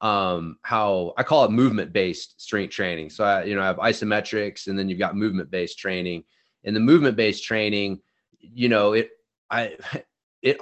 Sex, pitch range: male, 100-125 Hz